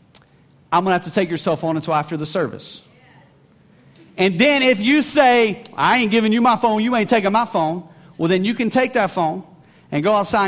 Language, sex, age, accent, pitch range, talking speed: English, male, 40-59, American, 160-215 Hz, 225 wpm